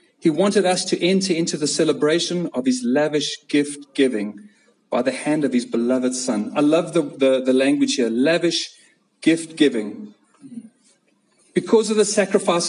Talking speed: 155 wpm